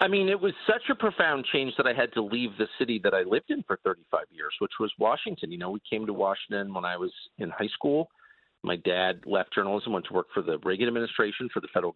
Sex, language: male, English